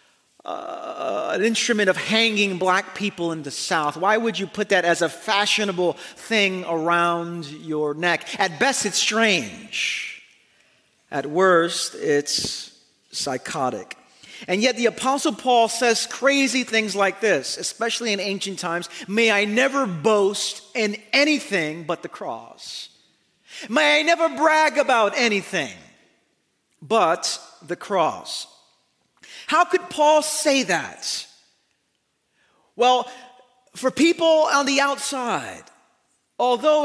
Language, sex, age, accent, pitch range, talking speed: English, male, 40-59, American, 195-280 Hz, 120 wpm